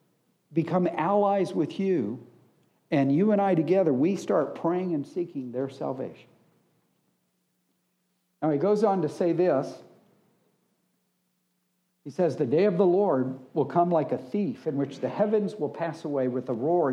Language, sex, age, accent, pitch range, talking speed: English, male, 60-79, American, 145-190 Hz, 160 wpm